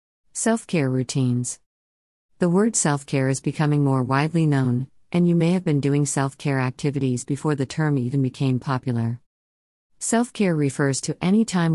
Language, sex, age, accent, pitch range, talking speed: English, female, 50-69, American, 130-165 Hz, 150 wpm